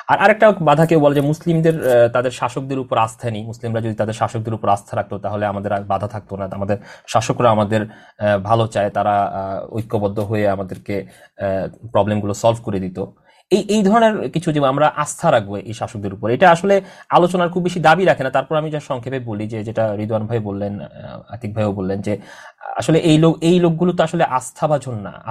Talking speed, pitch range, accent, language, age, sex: 115 wpm, 110-165 Hz, Indian, English, 30-49, male